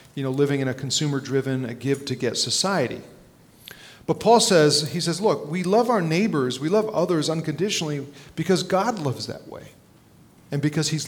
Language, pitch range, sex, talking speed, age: English, 135-160 Hz, male, 170 wpm, 40-59